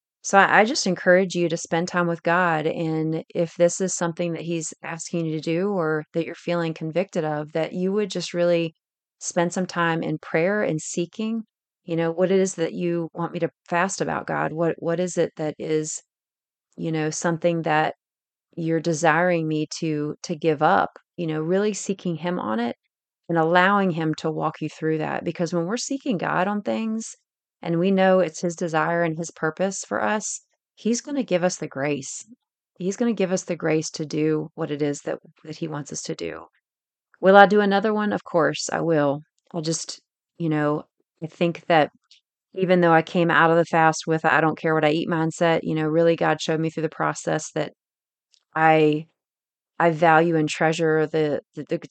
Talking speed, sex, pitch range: 205 wpm, female, 155-175 Hz